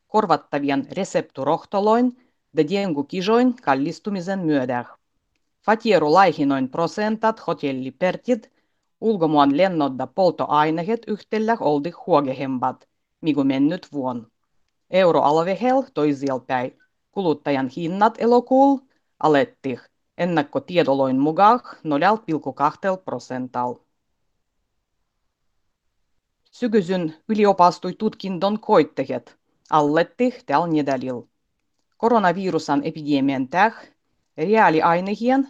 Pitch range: 145-215 Hz